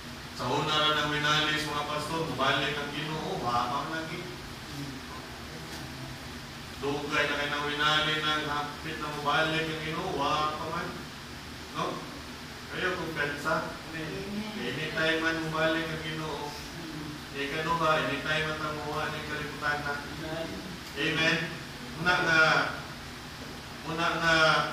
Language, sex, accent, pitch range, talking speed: English, male, Filipino, 150-180 Hz, 110 wpm